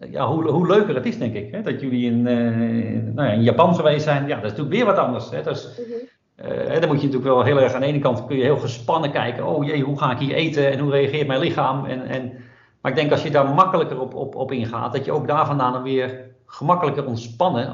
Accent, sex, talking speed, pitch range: Dutch, male, 265 wpm, 115-140 Hz